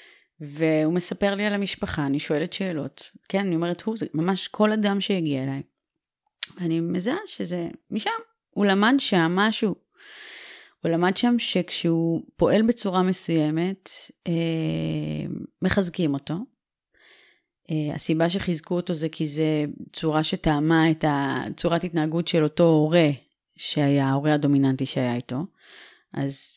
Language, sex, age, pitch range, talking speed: Hebrew, female, 30-49, 155-200 Hz, 125 wpm